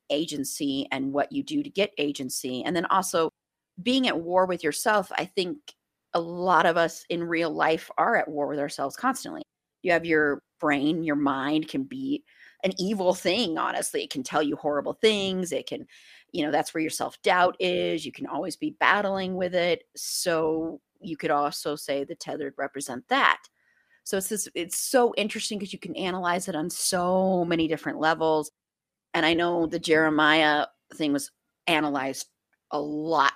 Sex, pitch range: female, 160-220 Hz